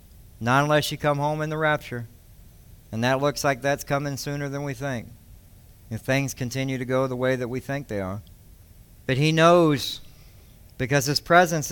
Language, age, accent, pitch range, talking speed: English, 60-79, American, 115-155 Hz, 185 wpm